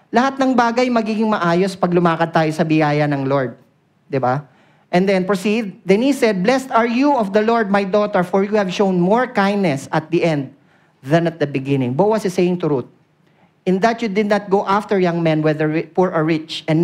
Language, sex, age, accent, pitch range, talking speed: Filipino, male, 40-59, native, 150-200 Hz, 215 wpm